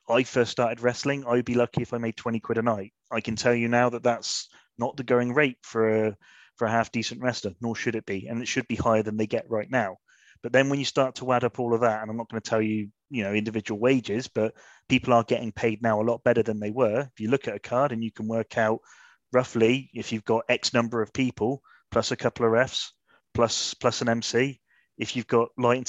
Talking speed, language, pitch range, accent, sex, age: 260 wpm, English, 115-135 Hz, British, male, 30-49